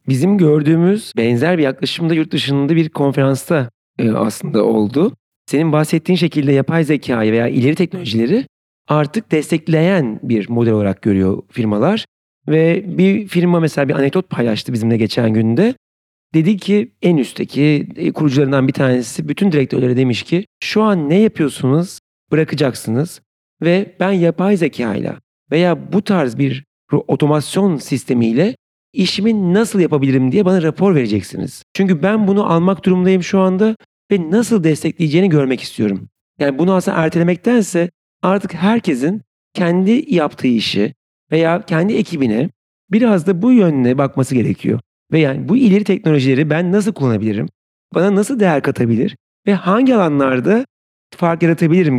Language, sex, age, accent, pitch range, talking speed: Turkish, male, 40-59, native, 135-190 Hz, 135 wpm